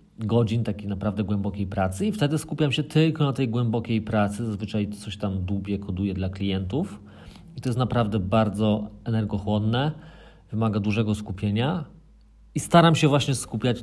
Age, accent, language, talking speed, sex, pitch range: 40-59, native, Polish, 150 wpm, male, 100-125 Hz